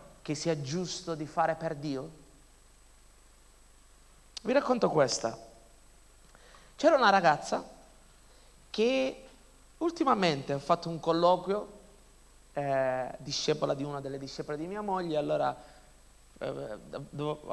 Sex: male